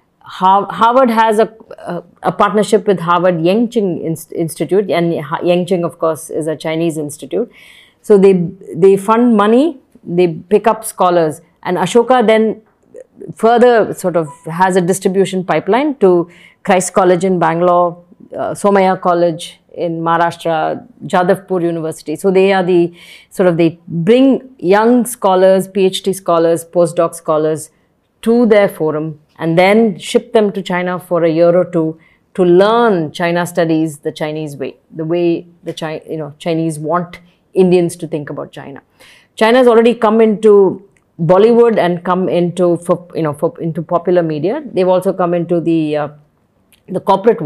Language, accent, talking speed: English, Indian, 155 wpm